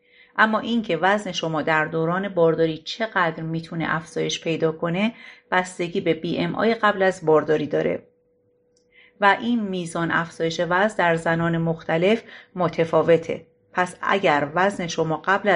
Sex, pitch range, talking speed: female, 165-210 Hz, 135 wpm